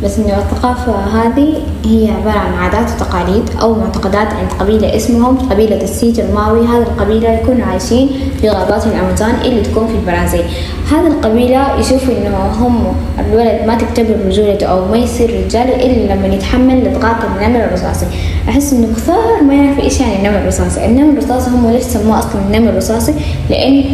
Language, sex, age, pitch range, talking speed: Arabic, female, 20-39, 180-250 Hz, 160 wpm